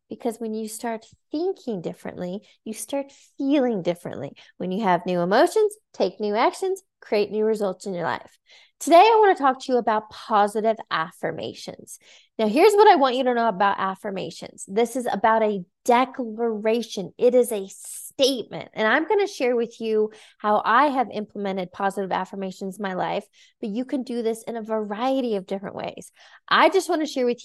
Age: 20-39